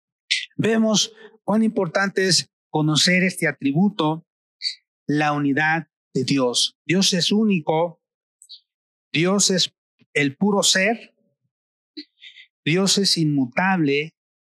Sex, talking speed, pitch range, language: male, 90 wpm, 140-175 Hz, Spanish